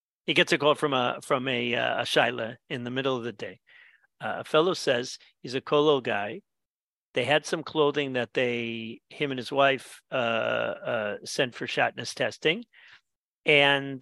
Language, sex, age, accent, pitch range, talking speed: English, male, 50-69, American, 135-175 Hz, 180 wpm